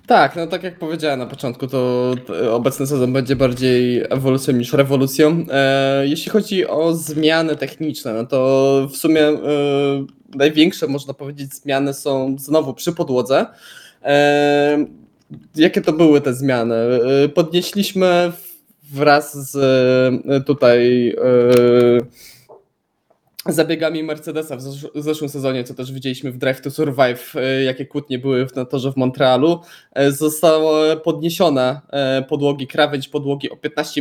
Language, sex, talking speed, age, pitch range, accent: Polish, male, 120 wpm, 20-39, 130-150 Hz, native